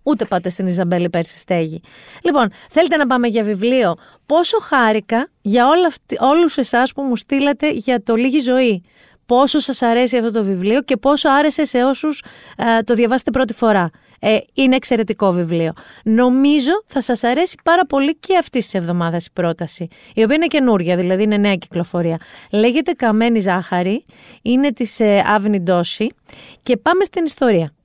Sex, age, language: female, 30-49, Greek